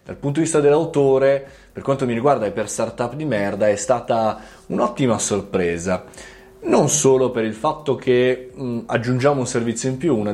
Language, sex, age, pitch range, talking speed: Italian, male, 20-39, 110-155 Hz, 180 wpm